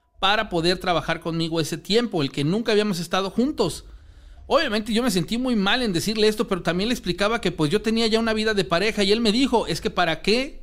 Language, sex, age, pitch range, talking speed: Spanish, male, 40-59, 145-195 Hz, 235 wpm